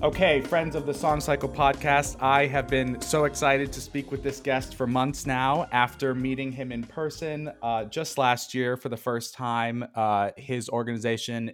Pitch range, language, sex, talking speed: 115-145 Hz, English, male, 185 wpm